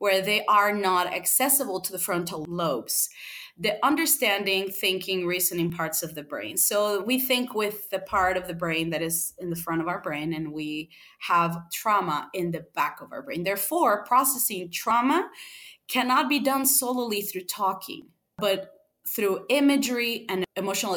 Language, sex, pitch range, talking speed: English, female, 170-205 Hz, 165 wpm